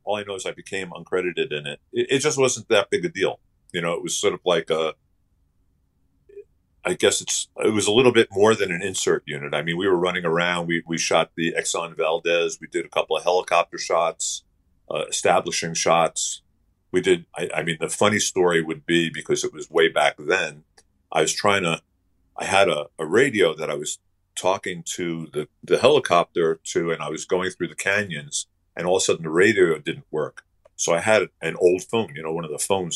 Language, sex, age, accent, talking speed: English, male, 50-69, American, 220 wpm